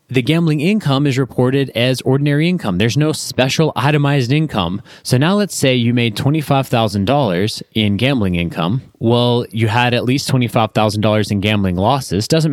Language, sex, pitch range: English, male, 115-145 Hz